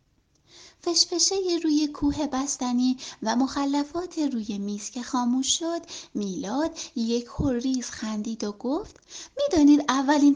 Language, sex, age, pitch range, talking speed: Persian, female, 30-49, 235-315 Hz, 110 wpm